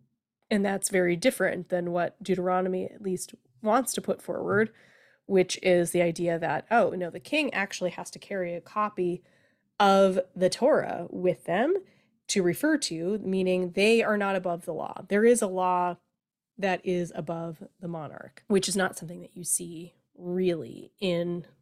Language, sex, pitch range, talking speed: English, female, 175-210 Hz, 170 wpm